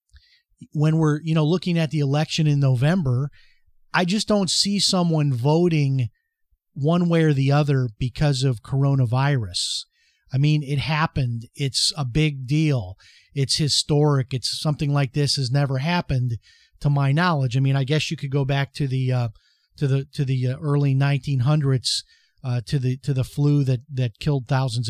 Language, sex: English, male